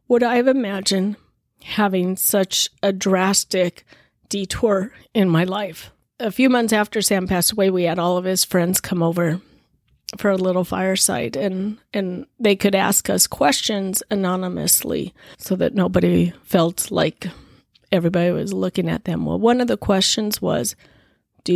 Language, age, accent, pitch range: English, 30-49, American, 190-215 Hz